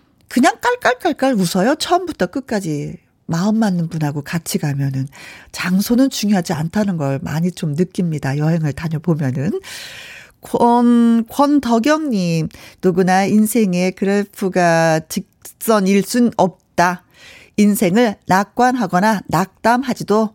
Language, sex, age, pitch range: Korean, female, 40-59, 185-260 Hz